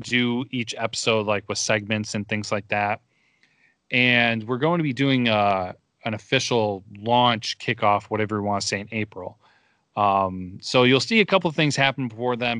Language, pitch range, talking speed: English, 105-125 Hz, 185 wpm